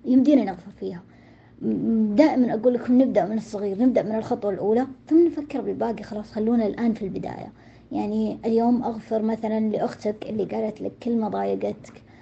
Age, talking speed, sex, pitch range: 20-39, 150 wpm, male, 210-255 Hz